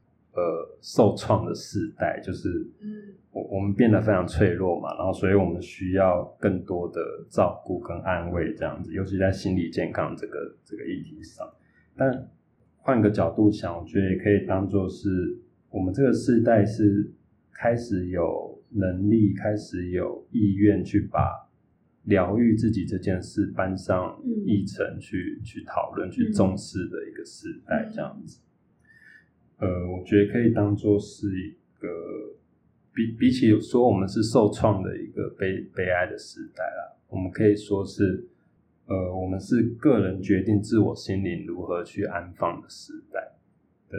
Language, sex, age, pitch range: Chinese, male, 20-39, 95-120 Hz